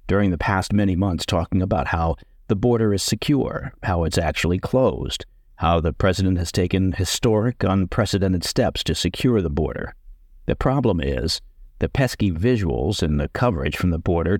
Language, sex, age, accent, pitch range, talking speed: English, male, 50-69, American, 85-105 Hz, 165 wpm